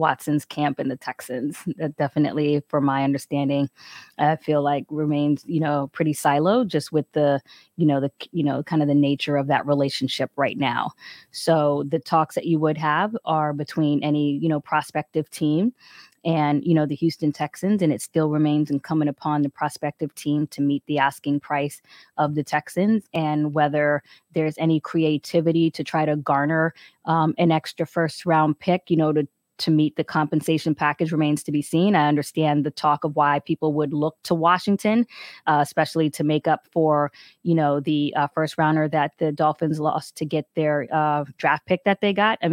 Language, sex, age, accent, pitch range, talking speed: English, female, 20-39, American, 145-160 Hz, 195 wpm